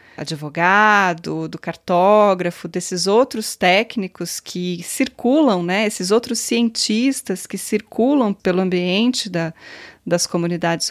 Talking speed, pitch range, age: 100 wpm, 180-235 Hz, 20-39